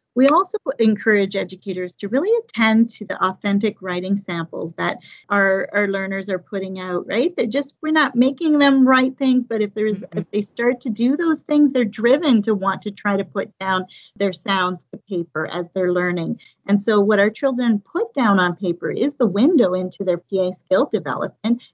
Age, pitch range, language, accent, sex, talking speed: 40-59, 185-240 Hz, English, American, female, 195 wpm